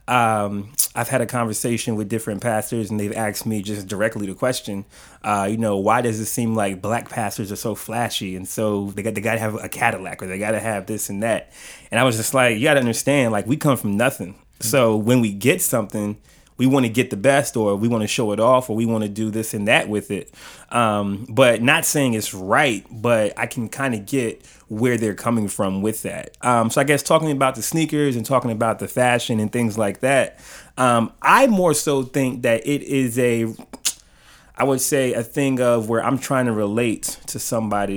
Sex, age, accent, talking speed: male, 30-49, American, 230 wpm